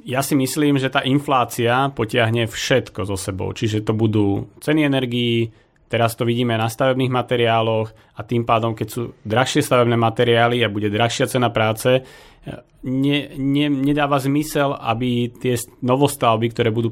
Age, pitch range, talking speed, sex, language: 30-49, 110-125 Hz, 155 wpm, male, Slovak